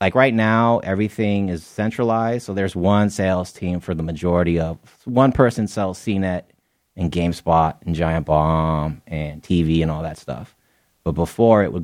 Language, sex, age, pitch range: English, male, 30-49, 85-105 Hz